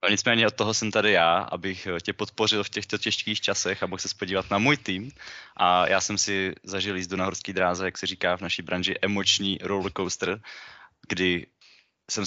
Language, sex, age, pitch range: Czech, male, 20-39, 90-100 Hz